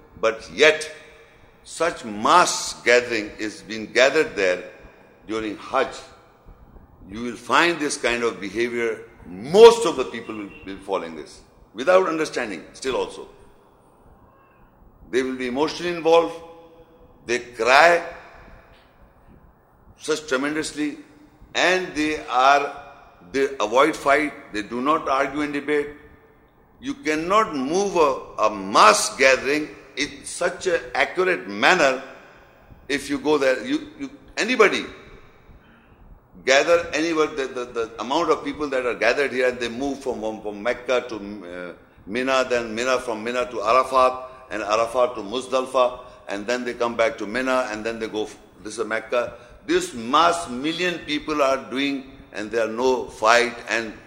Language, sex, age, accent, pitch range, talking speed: English, male, 60-79, Indian, 115-155 Hz, 140 wpm